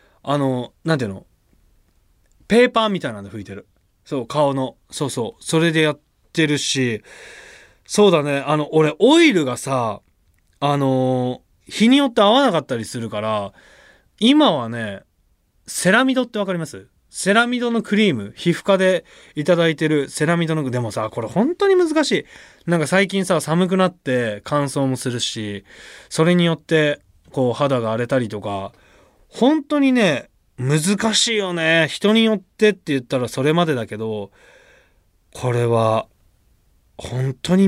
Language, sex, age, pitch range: Japanese, male, 20-39, 120-190 Hz